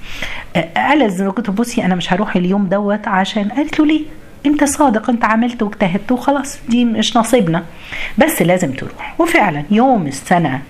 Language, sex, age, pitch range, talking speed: Arabic, female, 50-69, 145-220 Hz, 155 wpm